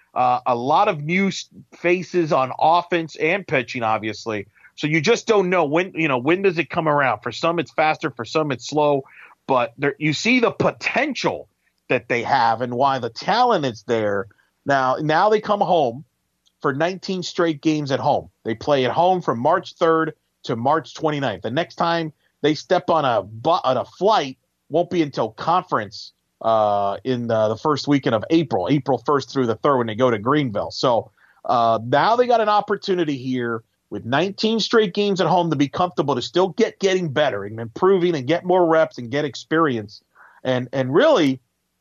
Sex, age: male, 40-59